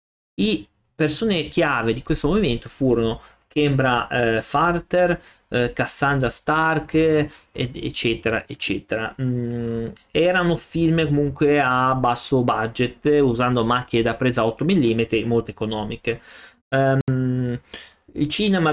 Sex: male